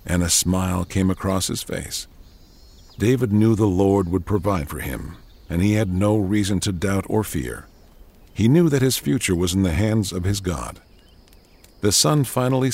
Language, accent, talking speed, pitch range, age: English, American, 185 wpm, 90-110 Hz, 50-69